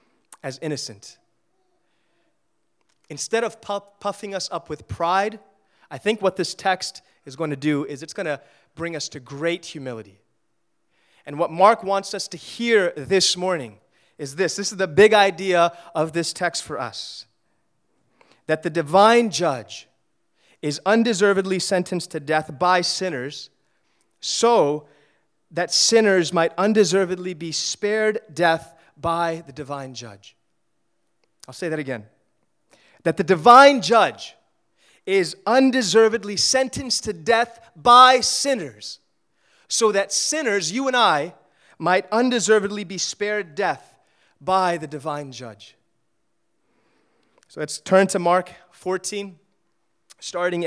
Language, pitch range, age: English, 155-205 Hz, 30-49